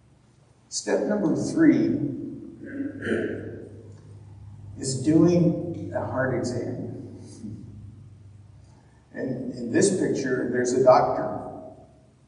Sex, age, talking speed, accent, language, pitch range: male, 60-79, 75 wpm, American, English, 130-170 Hz